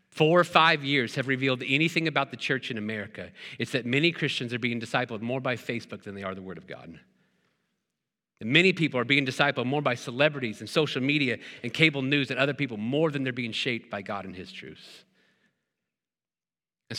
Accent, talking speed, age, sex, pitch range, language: American, 200 wpm, 40-59, male, 125-170 Hz, English